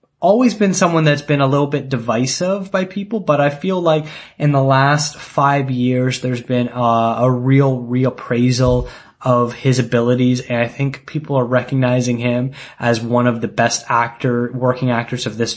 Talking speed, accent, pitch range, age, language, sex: 175 wpm, American, 120-135 Hz, 20-39, English, male